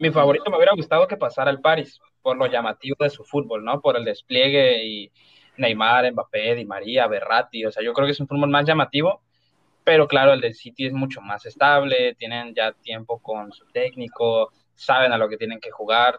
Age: 20-39